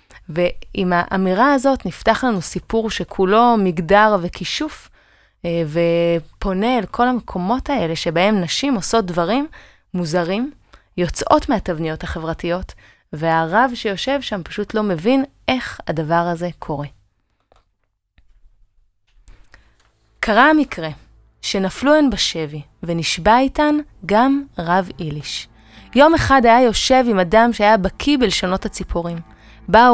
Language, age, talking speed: Hebrew, 20-39, 105 wpm